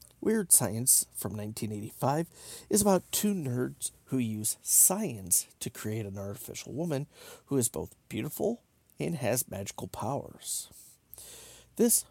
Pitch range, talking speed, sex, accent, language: 110-150 Hz, 125 wpm, male, American, English